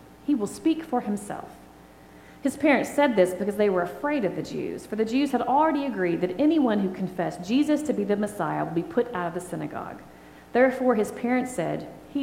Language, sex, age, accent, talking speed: English, female, 40-59, American, 210 wpm